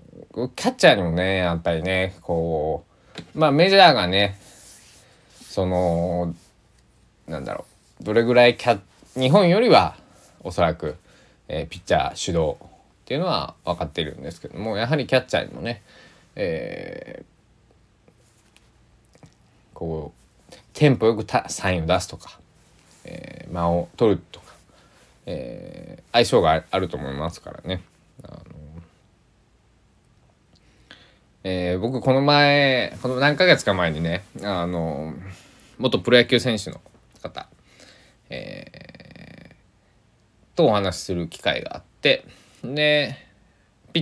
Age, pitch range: 20-39, 90-130 Hz